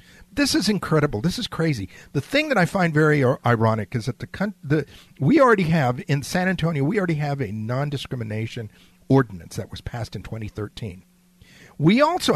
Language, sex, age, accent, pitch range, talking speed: English, male, 50-69, American, 120-185 Hz, 175 wpm